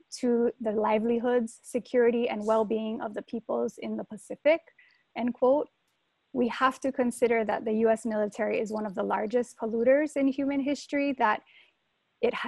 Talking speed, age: 160 wpm, 10-29